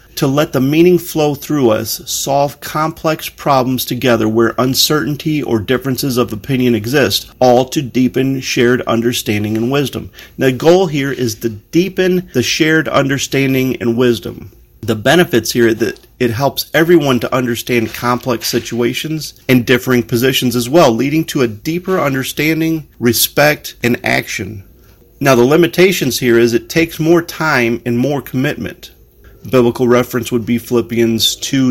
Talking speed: 150 wpm